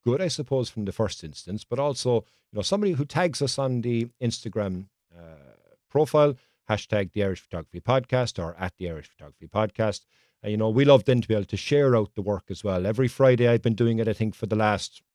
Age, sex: 50-69, male